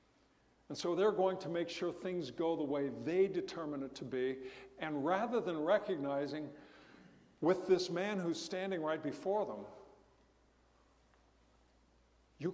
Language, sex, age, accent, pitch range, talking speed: English, male, 60-79, American, 130-195 Hz, 140 wpm